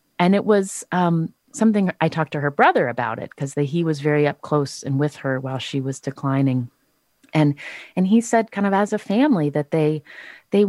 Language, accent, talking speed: English, American, 210 wpm